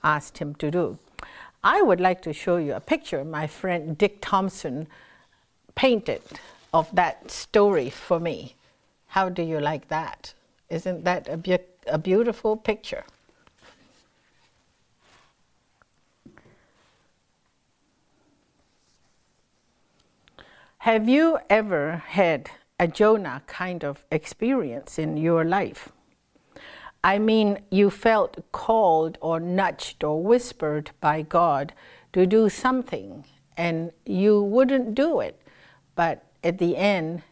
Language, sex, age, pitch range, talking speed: English, female, 60-79, 160-210 Hz, 110 wpm